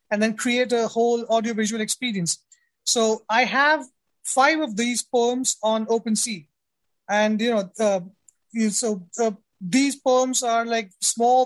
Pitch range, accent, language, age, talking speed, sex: 220-260 Hz, Indian, English, 20-39, 140 wpm, male